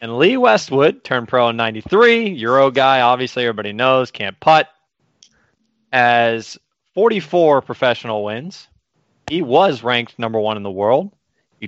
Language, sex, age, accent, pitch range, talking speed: English, male, 30-49, American, 105-135 Hz, 140 wpm